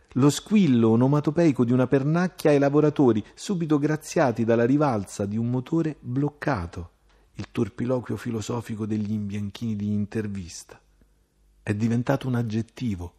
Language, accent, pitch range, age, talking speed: Italian, native, 105-135 Hz, 40-59, 125 wpm